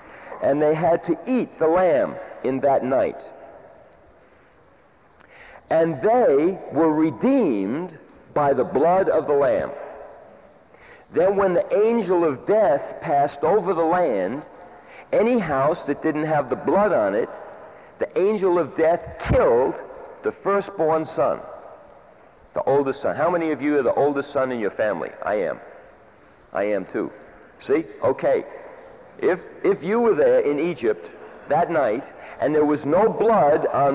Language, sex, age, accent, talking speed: English, male, 60-79, American, 145 wpm